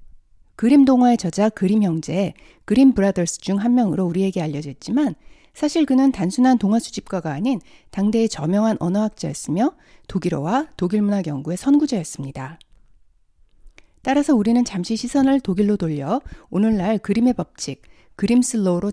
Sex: female